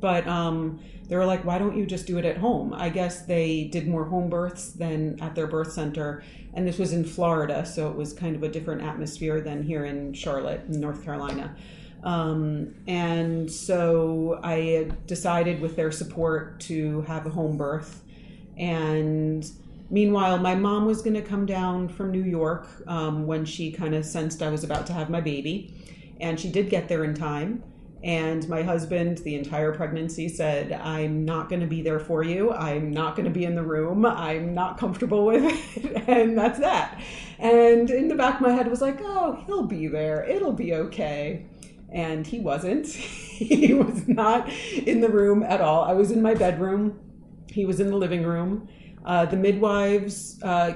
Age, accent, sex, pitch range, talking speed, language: 40-59, American, female, 160-195 Hz, 190 wpm, English